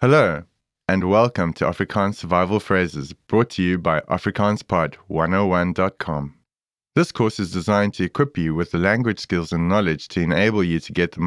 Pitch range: 80-105 Hz